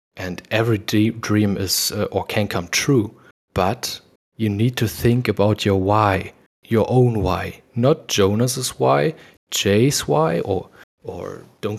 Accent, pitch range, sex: German, 100-130 Hz, male